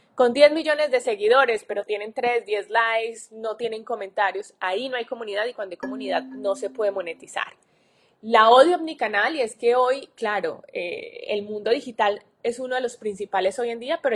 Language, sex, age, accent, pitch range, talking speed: Spanish, female, 20-39, Colombian, 200-245 Hz, 195 wpm